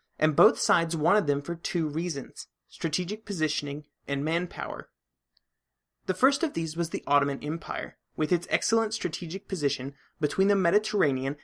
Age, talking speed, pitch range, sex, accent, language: 30-49, 145 wpm, 145-200 Hz, male, American, English